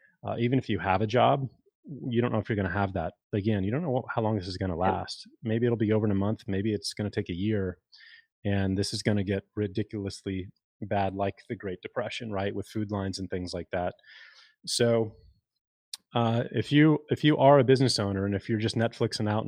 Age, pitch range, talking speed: 30-49, 100-120 Hz, 235 wpm